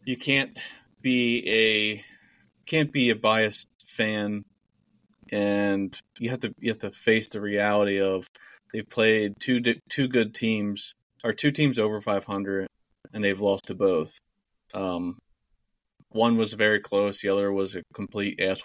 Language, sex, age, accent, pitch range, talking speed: English, male, 20-39, American, 95-110 Hz, 150 wpm